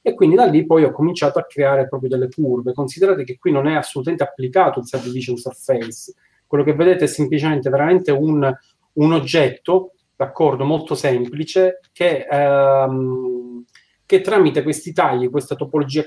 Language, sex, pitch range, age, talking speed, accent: Italian, male, 130-155 Hz, 30-49, 155 wpm, native